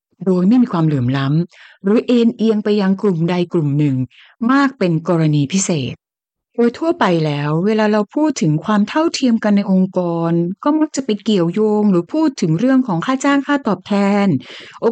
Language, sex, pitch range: Thai, female, 165-235 Hz